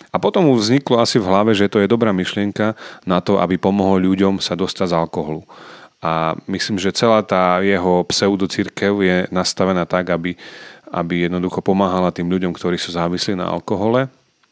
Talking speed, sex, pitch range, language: 175 wpm, male, 90-110 Hz, Slovak